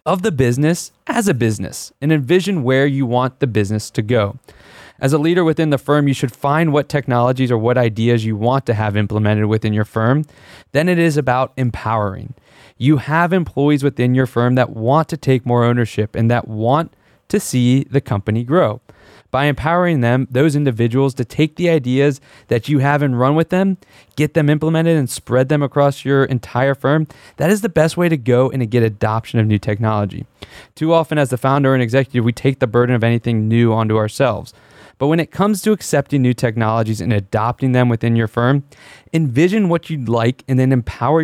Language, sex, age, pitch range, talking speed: English, male, 20-39, 110-145 Hz, 200 wpm